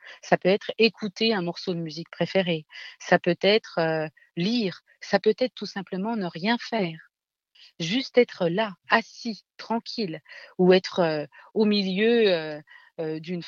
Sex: female